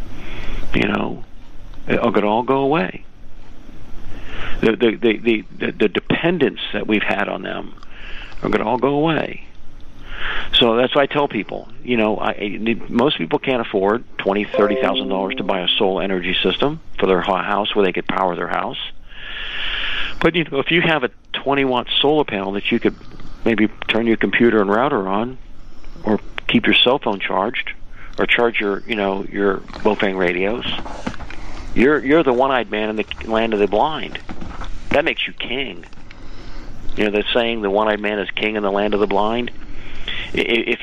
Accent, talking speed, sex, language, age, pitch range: American, 180 wpm, male, English, 50-69, 100-125 Hz